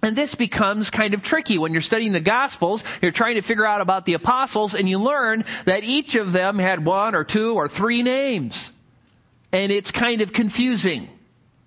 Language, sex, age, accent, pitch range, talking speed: English, male, 40-59, American, 150-215 Hz, 195 wpm